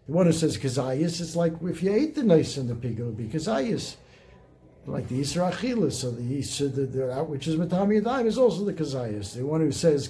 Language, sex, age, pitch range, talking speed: English, male, 60-79, 130-175 Hz, 225 wpm